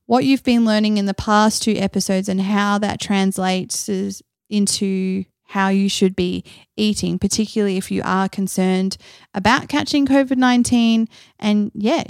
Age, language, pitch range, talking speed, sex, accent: 20-39, English, 195-245 Hz, 150 wpm, female, Australian